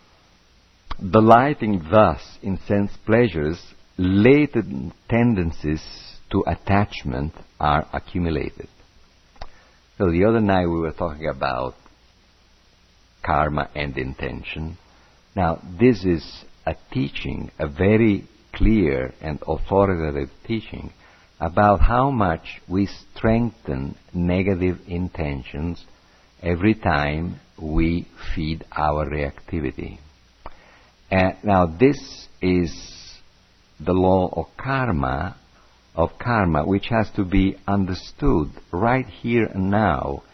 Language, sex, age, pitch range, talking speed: English, male, 50-69, 80-100 Hz, 95 wpm